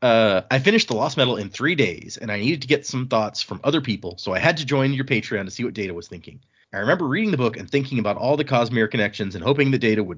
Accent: American